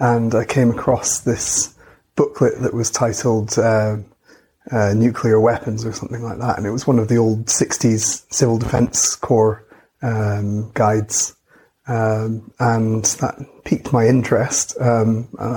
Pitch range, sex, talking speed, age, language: 110-120 Hz, male, 145 wpm, 30-49, English